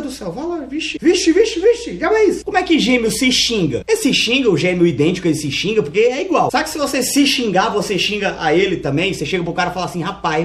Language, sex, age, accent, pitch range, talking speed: Portuguese, male, 20-39, Brazilian, 165-270 Hz, 265 wpm